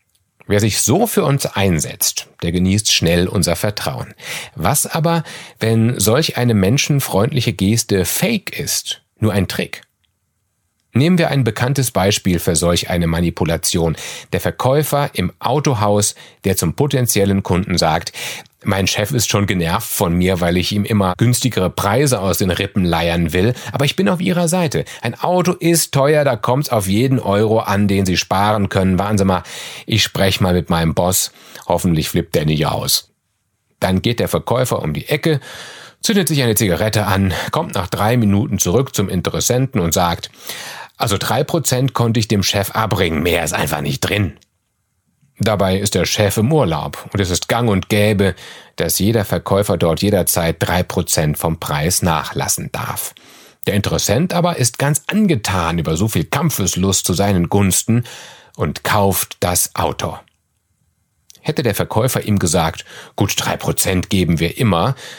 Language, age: German, 40-59